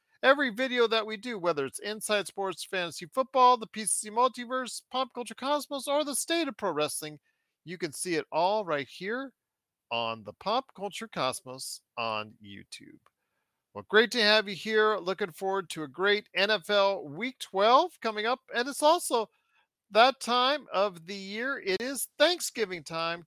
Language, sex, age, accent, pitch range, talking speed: English, male, 40-59, American, 175-250 Hz, 170 wpm